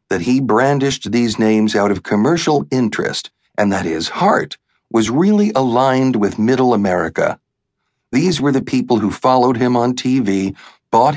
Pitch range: 110-145 Hz